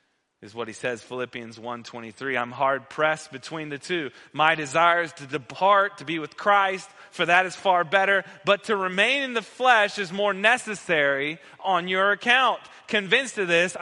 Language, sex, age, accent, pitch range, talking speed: English, male, 30-49, American, 155-220 Hz, 180 wpm